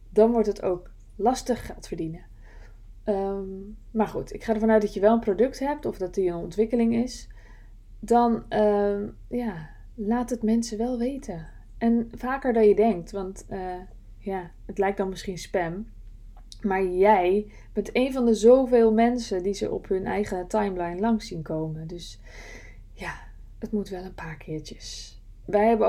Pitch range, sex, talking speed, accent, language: 180-230 Hz, female, 160 wpm, Dutch, Dutch